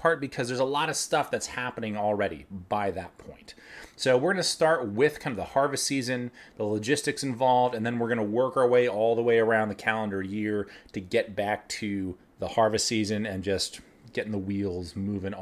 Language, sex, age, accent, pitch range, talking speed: English, male, 30-49, American, 100-135 Hz, 210 wpm